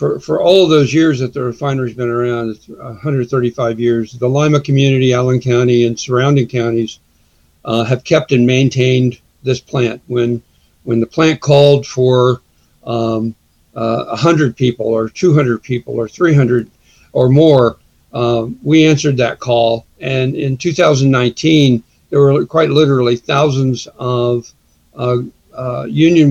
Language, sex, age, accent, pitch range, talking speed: English, male, 60-79, American, 120-140 Hz, 145 wpm